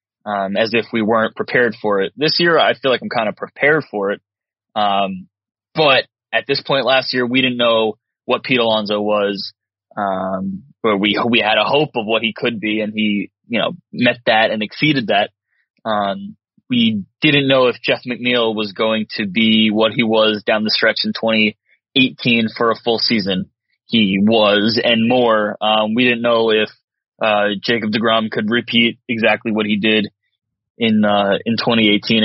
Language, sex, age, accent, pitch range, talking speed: English, male, 20-39, American, 105-120 Hz, 185 wpm